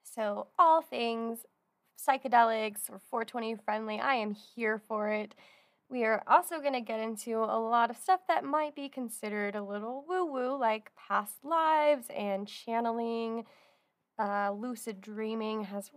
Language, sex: English, female